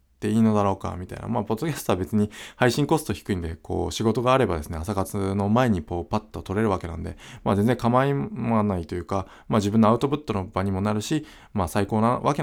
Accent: native